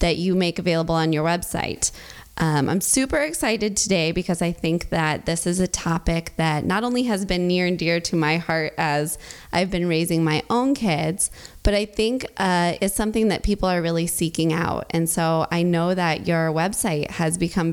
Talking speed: 200 wpm